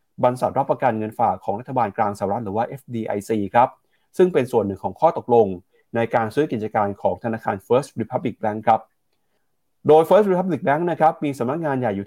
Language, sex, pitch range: Thai, male, 110-140 Hz